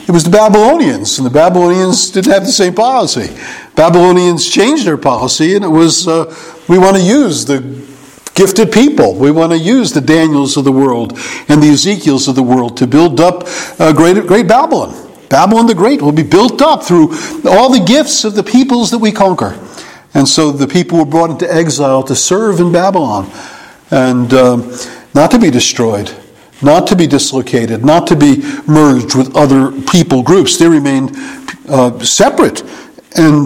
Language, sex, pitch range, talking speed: English, male, 140-190 Hz, 180 wpm